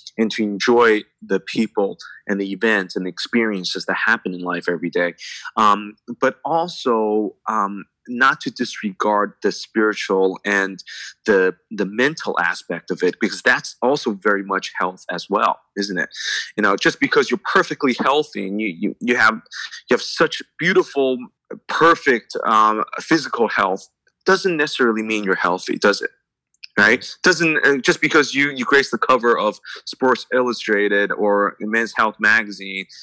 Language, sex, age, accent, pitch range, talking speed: English, male, 20-39, American, 100-130 Hz, 155 wpm